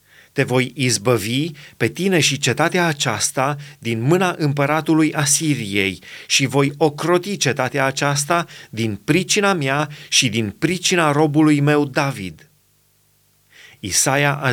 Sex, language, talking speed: male, Romanian, 115 wpm